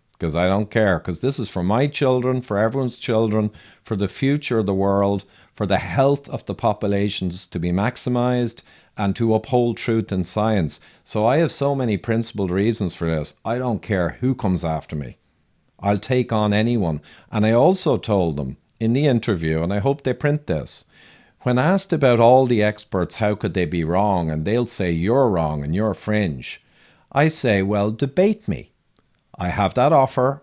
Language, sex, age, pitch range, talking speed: English, male, 50-69, 95-125 Hz, 190 wpm